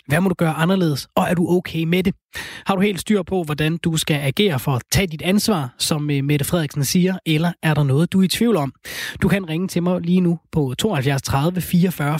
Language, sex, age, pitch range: Danish, male, 20-39, 150-185 Hz